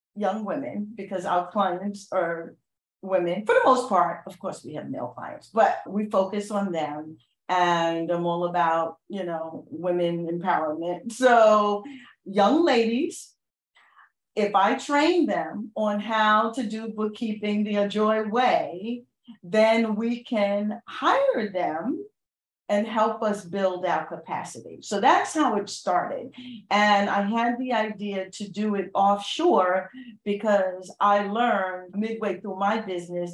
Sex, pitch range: female, 170-215 Hz